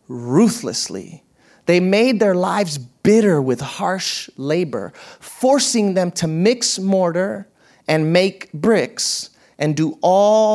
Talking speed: 115 wpm